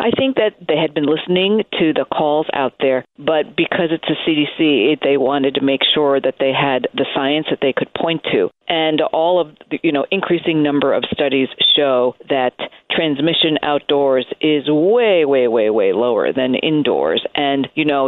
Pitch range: 140-175 Hz